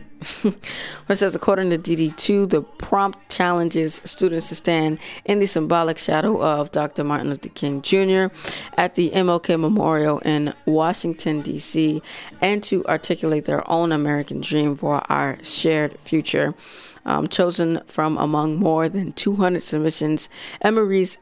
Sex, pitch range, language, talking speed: female, 150-185 Hz, English, 140 wpm